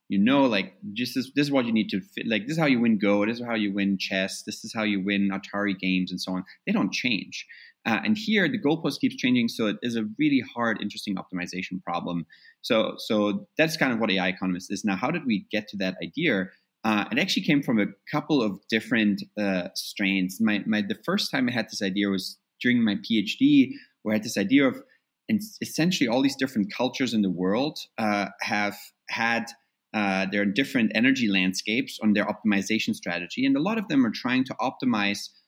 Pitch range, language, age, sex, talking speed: 100-150 Hz, English, 20-39, male, 225 wpm